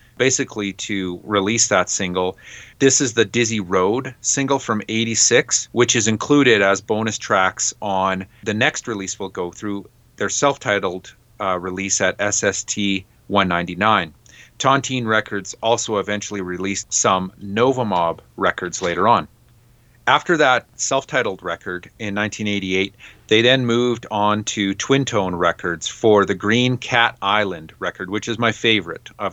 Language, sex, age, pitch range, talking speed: English, male, 30-49, 100-120 Hz, 140 wpm